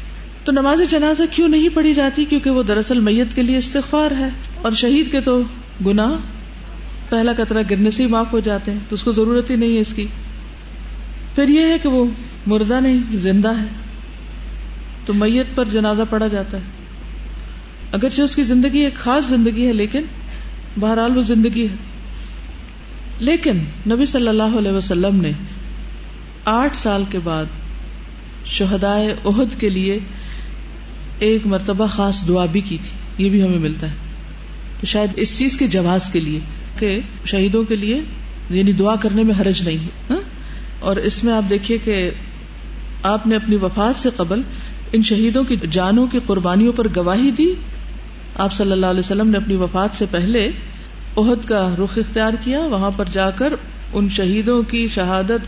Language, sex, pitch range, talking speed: Urdu, female, 195-245 Hz, 170 wpm